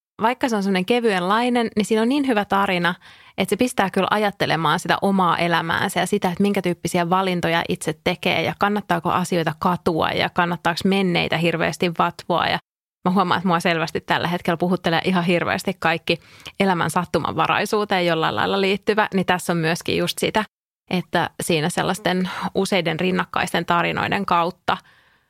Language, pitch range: English, 170-195 Hz